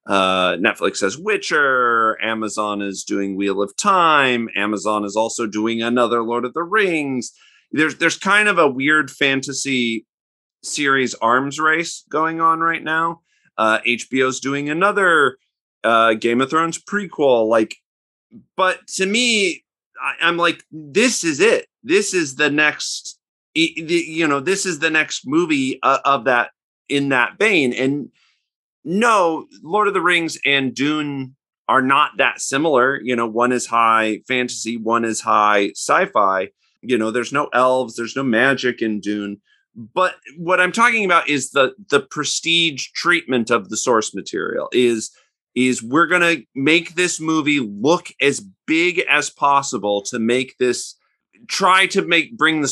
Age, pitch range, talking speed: 30-49, 115-170 Hz, 155 wpm